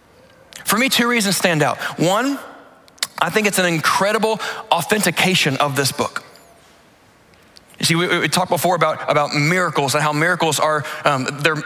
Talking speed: 160 wpm